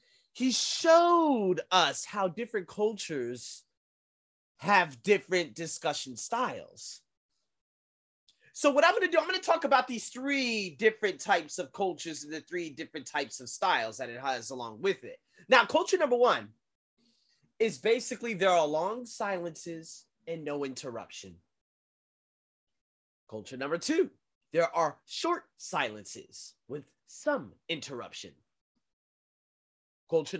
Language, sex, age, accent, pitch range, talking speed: English, male, 30-49, American, 145-230 Hz, 125 wpm